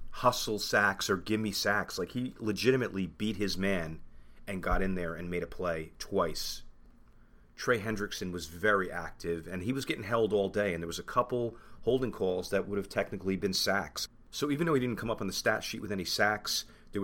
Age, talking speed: 30-49, 215 wpm